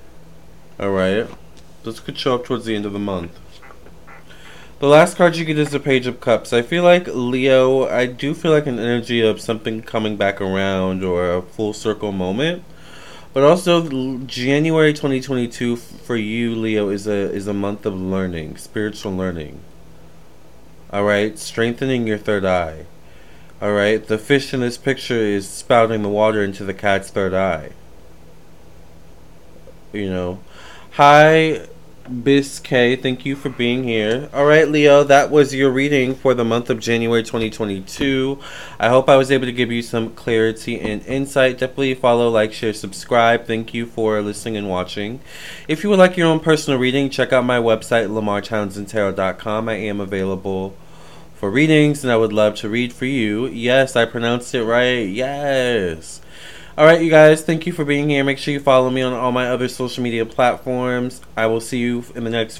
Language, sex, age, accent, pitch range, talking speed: English, male, 20-39, American, 105-135 Hz, 170 wpm